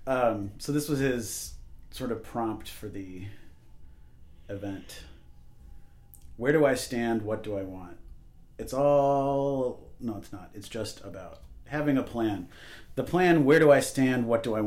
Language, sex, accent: English, male, American